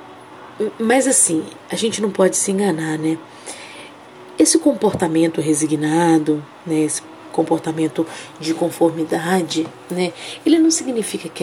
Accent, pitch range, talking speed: Brazilian, 160-185 Hz, 115 wpm